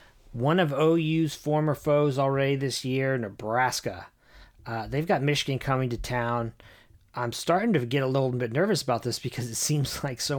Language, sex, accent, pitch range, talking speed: English, male, American, 115-140 Hz, 180 wpm